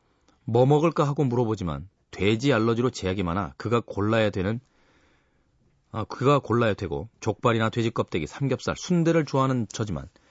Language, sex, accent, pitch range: Korean, male, native, 100-135 Hz